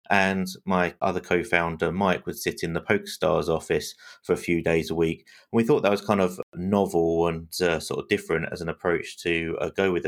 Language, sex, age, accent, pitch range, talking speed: English, male, 30-49, British, 85-100 Hz, 215 wpm